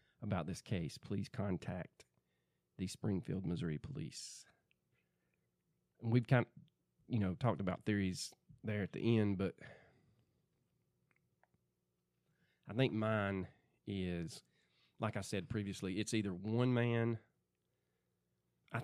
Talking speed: 110 wpm